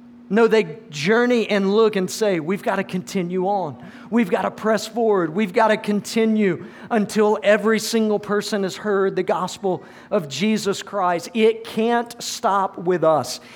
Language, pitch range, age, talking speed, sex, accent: English, 160-220 Hz, 50-69, 165 wpm, male, American